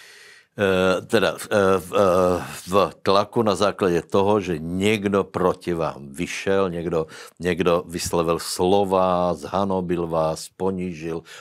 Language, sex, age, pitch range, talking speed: Slovak, male, 60-79, 85-100 Hz, 95 wpm